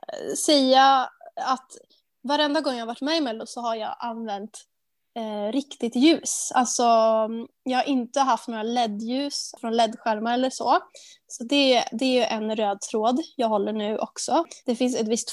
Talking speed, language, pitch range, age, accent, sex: 170 wpm, Swedish, 225-275 Hz, 20-39, native, female